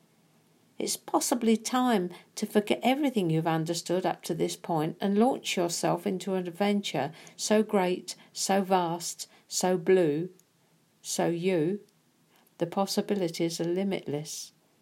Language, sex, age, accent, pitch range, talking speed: English, female, 50-69, British, 175-215 Hz, 120 wpm